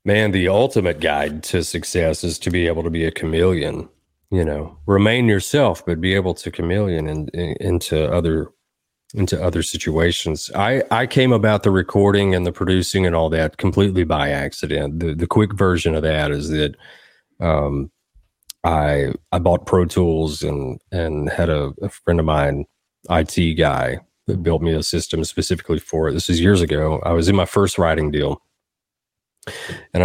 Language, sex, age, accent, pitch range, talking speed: English, male, 30-49, American, 80-100 Hz, 180 wpm